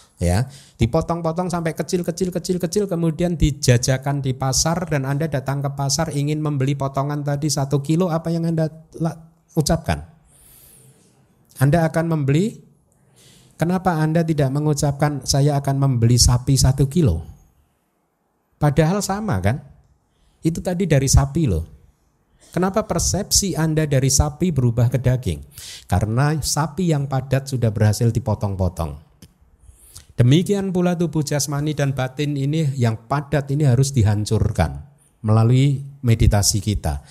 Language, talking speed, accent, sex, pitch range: Indonesian, 120 wpm, native, male, 105-150 Hz